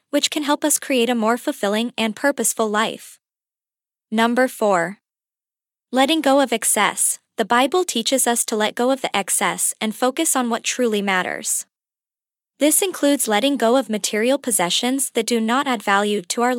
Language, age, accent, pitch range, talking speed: English, 20-39, American, 210-265 Hz, 170 wpm